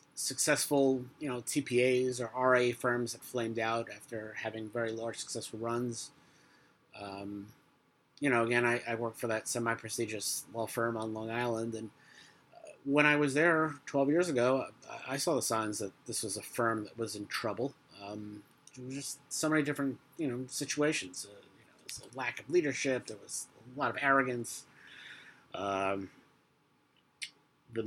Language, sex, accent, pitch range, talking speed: English, male, American, 110-135 Hz, 165 wpm